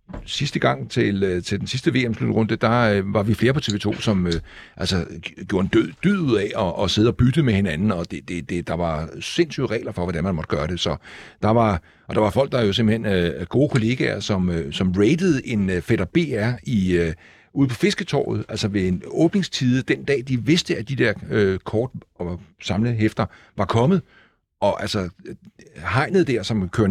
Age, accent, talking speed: 60-79, native, 210 wpm